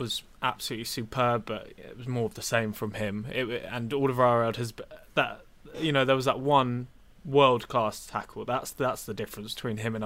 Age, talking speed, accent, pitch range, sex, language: 20-39, 210 wpm, British, 115-150 Hz, male, English